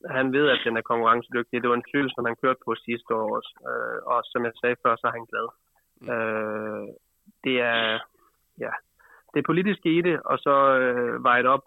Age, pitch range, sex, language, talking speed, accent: 20-39, 120-135 Hz, male, Danish, 200 wpm, native